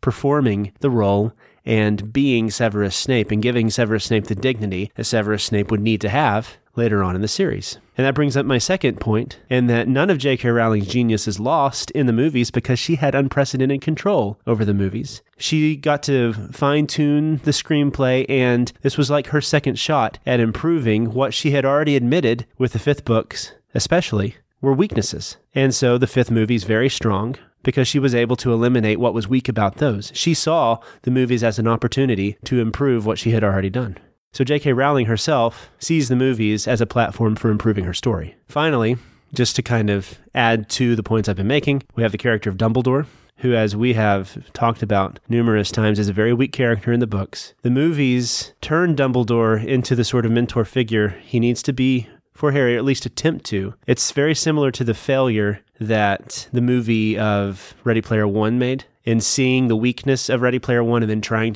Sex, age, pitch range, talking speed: male, 30-49, 110-135 Hz, 195 wpm